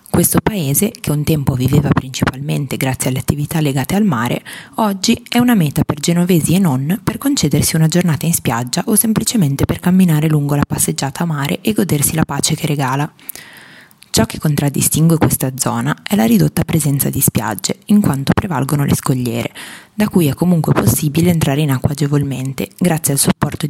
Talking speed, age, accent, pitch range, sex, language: 175 wpm, 20-39, native, 140-180 Hz, female, Italian